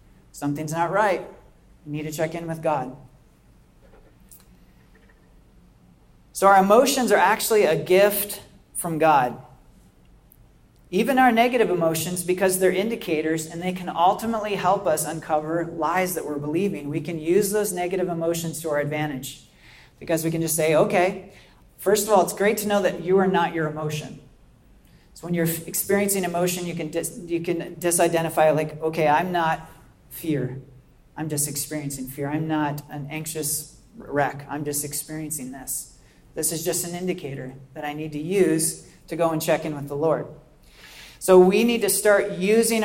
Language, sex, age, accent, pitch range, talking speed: English, male, 40-59, American, 150-185 Hz, 160 wpm